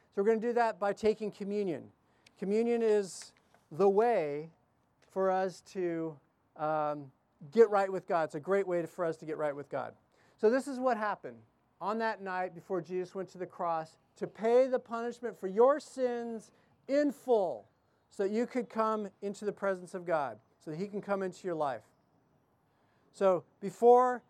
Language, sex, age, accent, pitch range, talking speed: English, male, 40-59, American, 150-210 Hz, 185 wpm